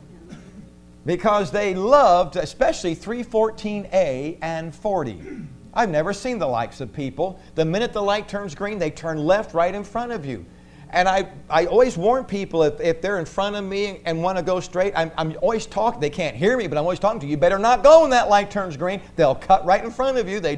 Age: 50-69